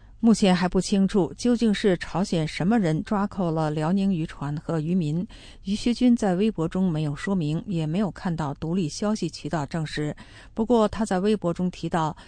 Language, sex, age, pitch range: English, female, 50-69, 160-205 Hz